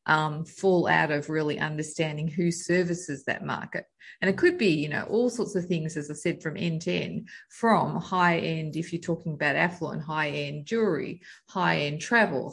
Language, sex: English, female